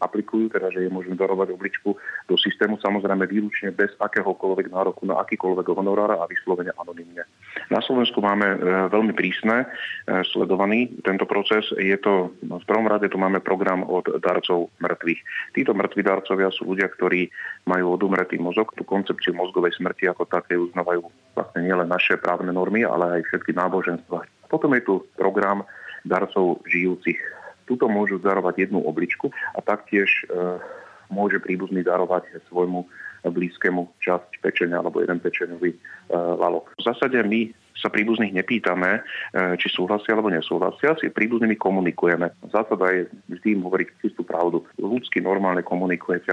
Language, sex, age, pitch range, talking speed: Slovak, male, 30-49, 90-100 Hz, 150 wpm